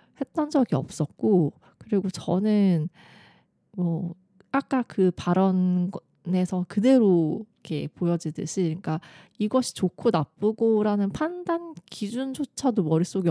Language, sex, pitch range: Korean, female, 160-205 Hz